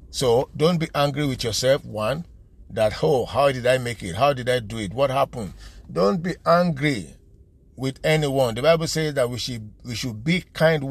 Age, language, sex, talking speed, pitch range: 50-69, English, male, 200 wpm, 110-140 Hz